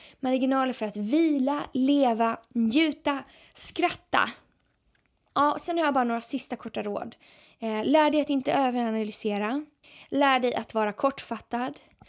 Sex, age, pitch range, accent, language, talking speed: female, 20-39, 230-280 Hz, native, Swedish, 130 wpm